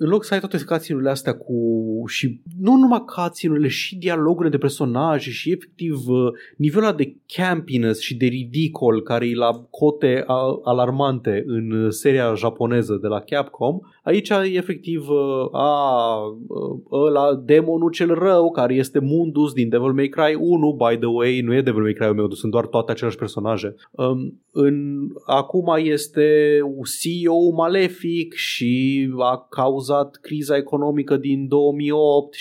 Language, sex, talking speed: Romanian, male, 150 wpm